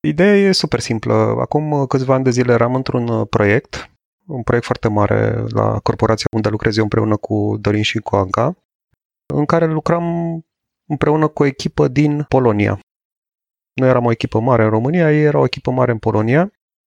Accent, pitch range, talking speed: native, 115-150 Hz, 180 wpm